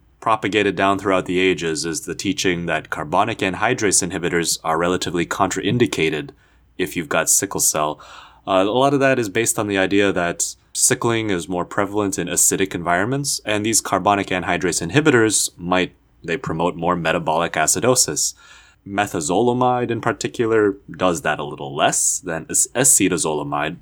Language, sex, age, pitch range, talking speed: English, male, 20-39, 85-115 Hz, 150 wpm